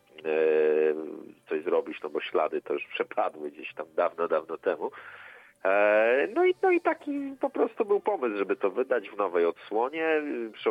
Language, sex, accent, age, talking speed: Polish, male, native, 40-59, 170 wpm